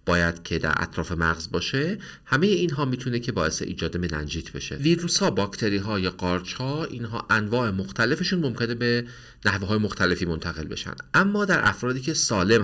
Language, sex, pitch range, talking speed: Persian, male, 85-120 Hz, 165 wpm